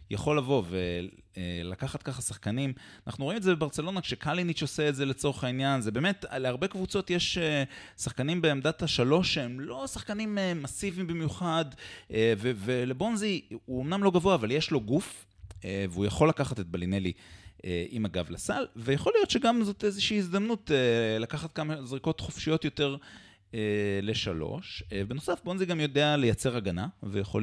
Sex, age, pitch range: male, 30-49, 100-155 Hz